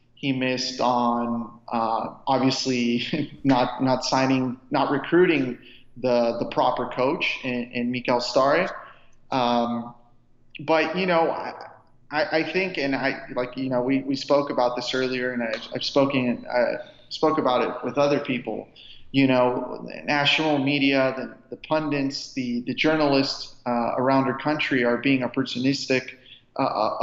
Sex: male